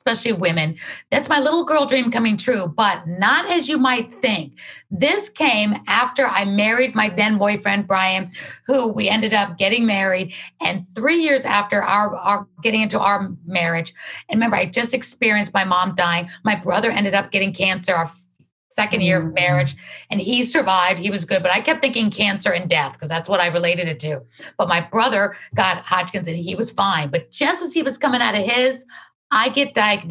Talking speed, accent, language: 200 wpm, American, English